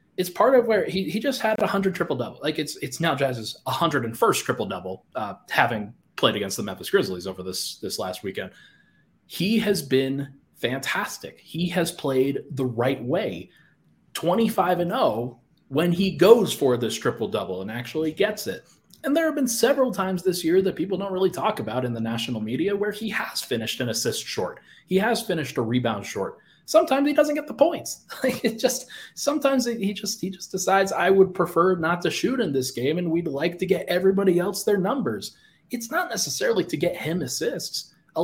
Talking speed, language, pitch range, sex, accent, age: 200 wpm, English, 135-215 Hz, male, American, 30-49